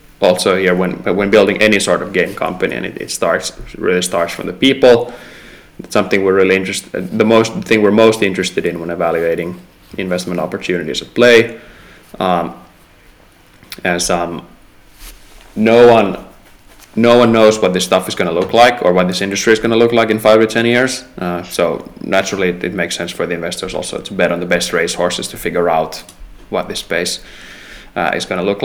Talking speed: 195 wpm